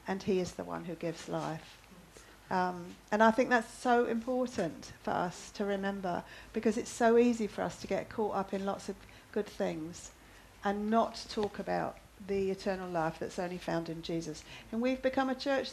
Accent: British